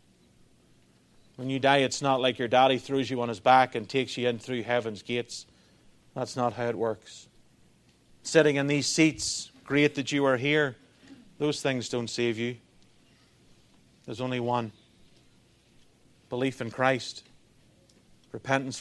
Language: English